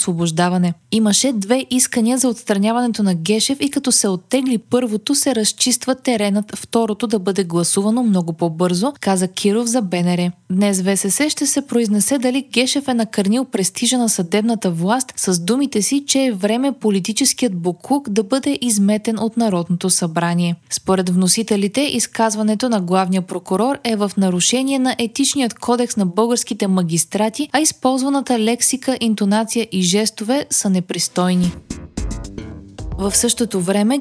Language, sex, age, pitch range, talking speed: Bulgarian, female, 20-39, 190-250 Hz, 140 wpm